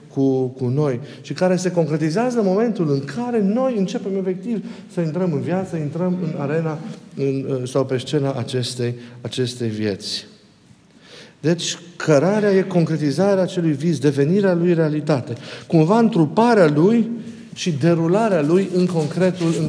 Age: 50-69